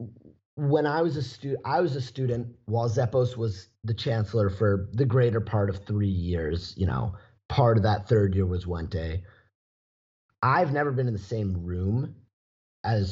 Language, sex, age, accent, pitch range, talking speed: English, male, 30-49, American, 95-120 Hz, 180 wpm